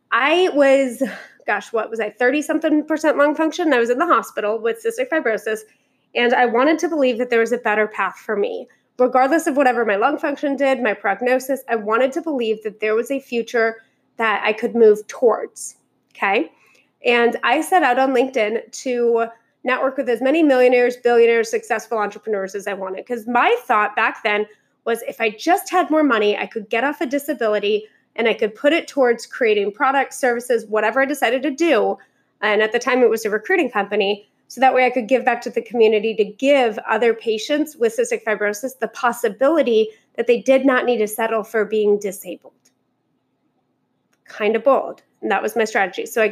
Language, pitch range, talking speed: English, 220-270 Hz, 200 wpm